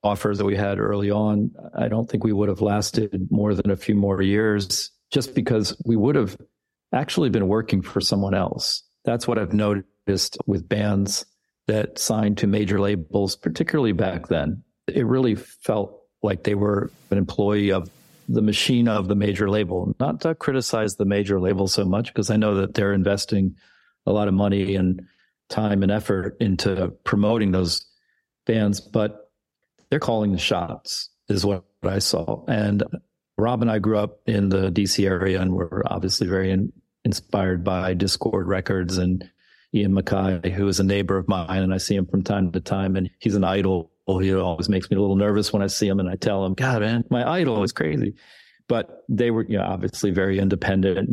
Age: 50-69